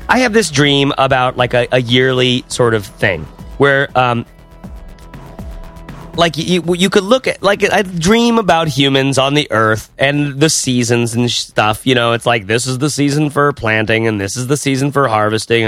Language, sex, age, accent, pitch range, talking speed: English, male, 30-49, American, 115-150 Hz, 190 wpm